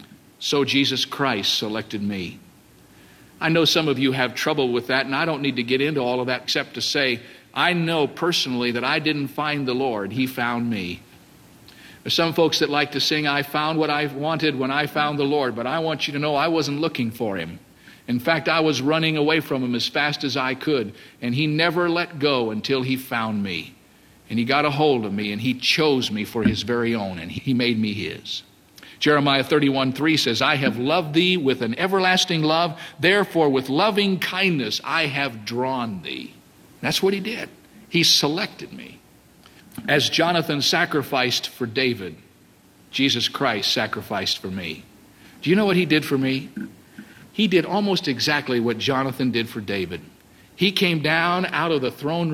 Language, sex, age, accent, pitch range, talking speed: English, male, 50-69, American, 125-160 Hz, 195 wpm